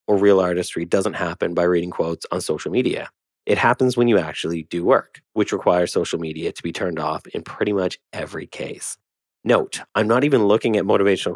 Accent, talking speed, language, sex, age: American, 200 wpm, English, male, 30-49